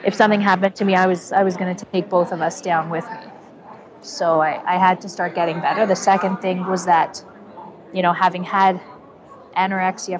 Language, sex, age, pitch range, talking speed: English, female, 30-49, 185-235 Hz, 210 wpm